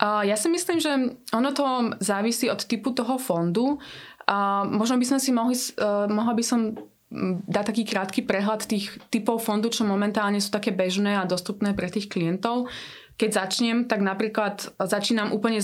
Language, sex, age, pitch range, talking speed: Czech, female, 20-39, 190-230 Hz, 175 wpm